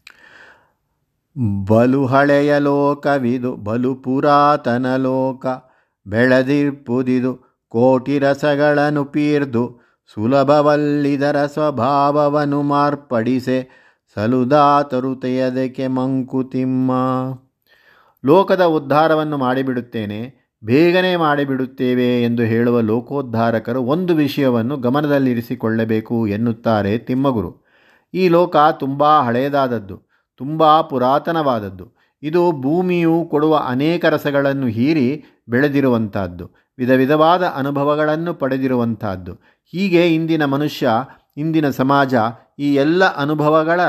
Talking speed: 70 wpm